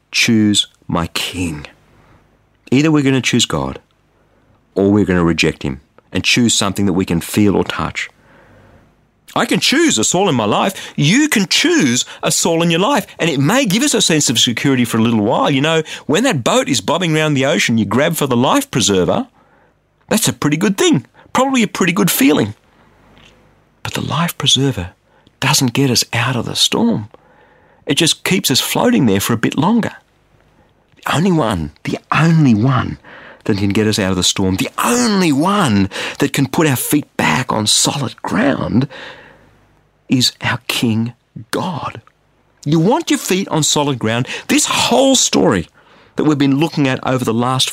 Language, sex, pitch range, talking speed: English, male, 105-160 Hz, 185 wpm